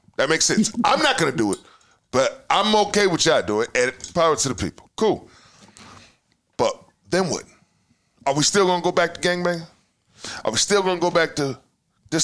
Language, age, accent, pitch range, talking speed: English, 20-39, American, 160-215 Hz, 210 wpm